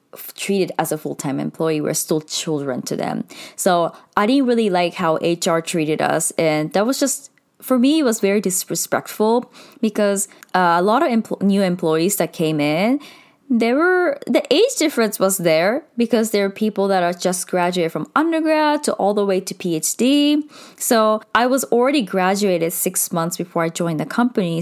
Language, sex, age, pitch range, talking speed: English, female, 20-39, 175-245 Hz, 185 wpm